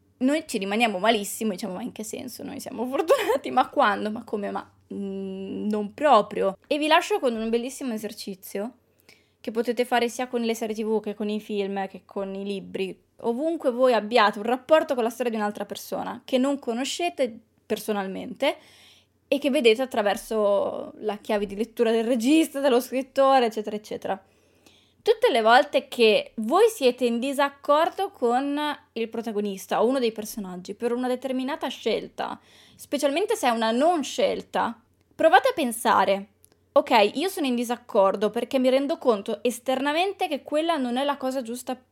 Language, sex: Italian, female